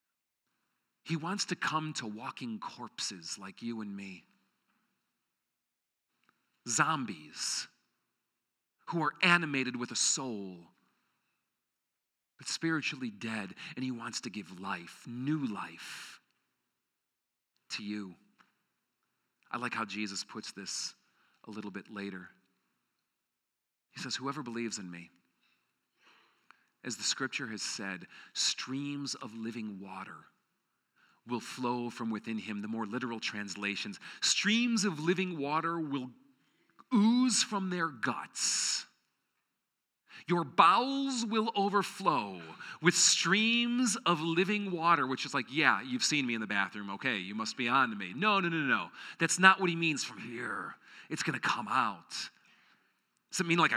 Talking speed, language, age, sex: 135 wpm, English, 40-59, male